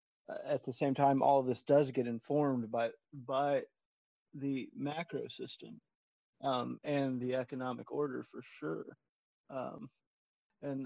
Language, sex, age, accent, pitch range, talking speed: English, male, 30-49, American, 115-135 Hz, 135 wpm